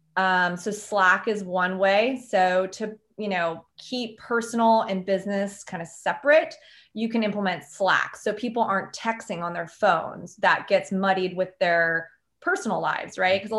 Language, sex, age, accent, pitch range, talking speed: English, female, 20-39, American, 185-220 Hz, 170 wpm